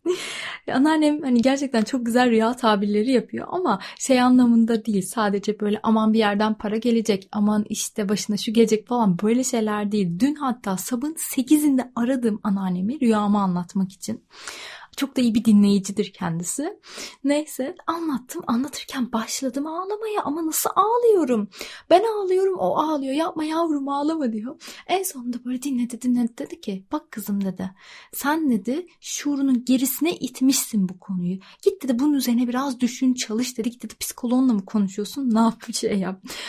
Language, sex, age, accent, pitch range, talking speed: Turkish, female, 30-49, native, 210-275 Hz, 155 wpm